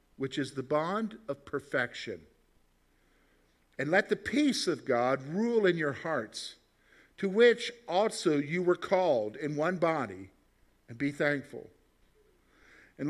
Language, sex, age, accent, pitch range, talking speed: English, male, 50-69, American, 135-190 Hz, 135 wpm